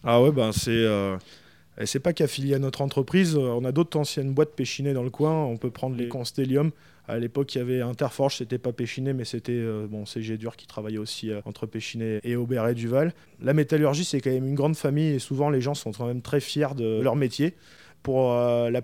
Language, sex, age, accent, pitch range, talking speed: French, male, 20-39, French, 115-140 Hz, 230 wpm